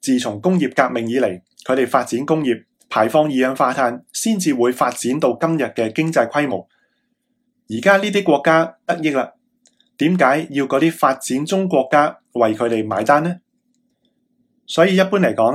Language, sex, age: Chinese, male, 20-39